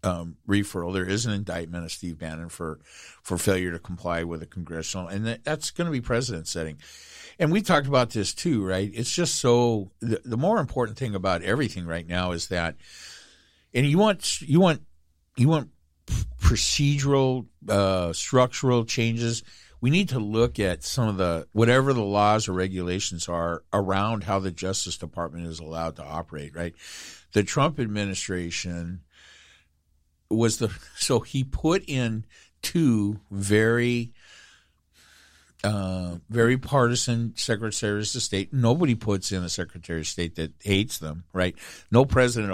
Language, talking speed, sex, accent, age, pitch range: English, 155 wpm, male, American, 50-69, 85-120 Hz